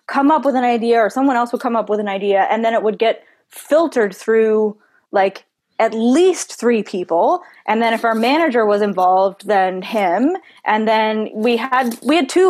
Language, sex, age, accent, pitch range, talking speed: English, female, 20-39, American, 210-265 Hz, 200 wpm